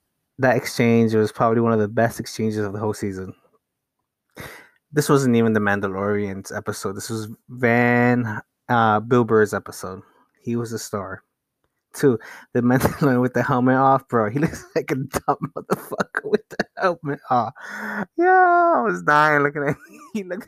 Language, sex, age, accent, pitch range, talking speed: English, male, 20-39, American, 115-150 Hz, 165 wpm